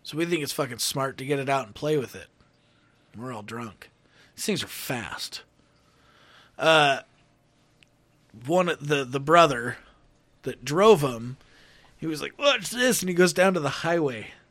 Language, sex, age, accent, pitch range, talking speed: English, male, 20-39, American, 140-200 Hz, 175 wpm